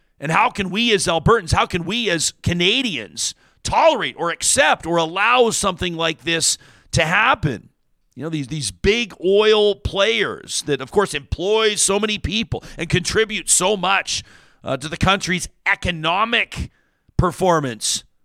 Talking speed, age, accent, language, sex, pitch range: 150 wpm, 50-69, American, English, male, 160-205 Hz